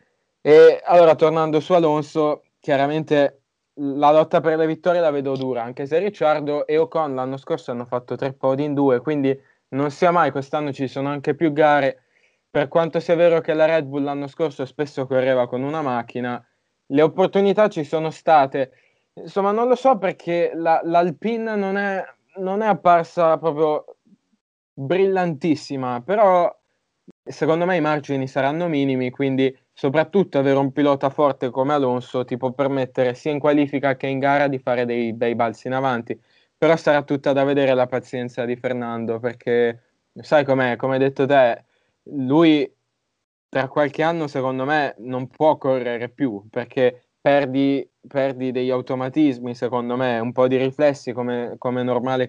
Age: 20-39